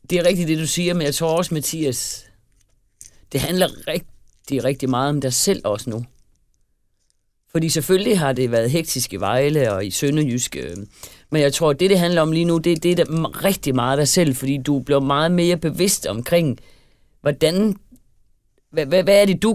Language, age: Danish, 40-59